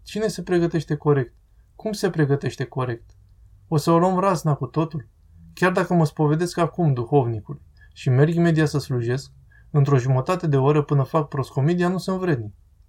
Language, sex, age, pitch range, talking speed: Romanian, male, 20-39, 120-155 Hz, 170 wpm